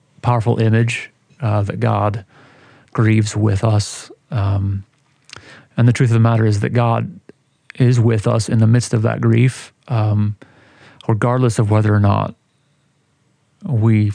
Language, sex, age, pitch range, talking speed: English, male, 30-49, 110-125 Hz, 145 wpm